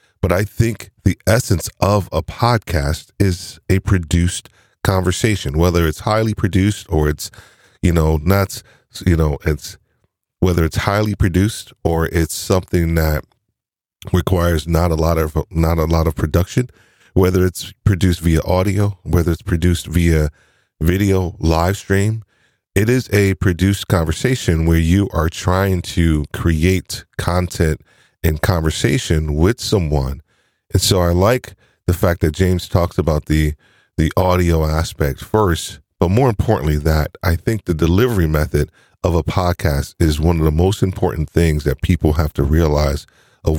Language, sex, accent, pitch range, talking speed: English, male, American, 80-100 Hz, 150 wpm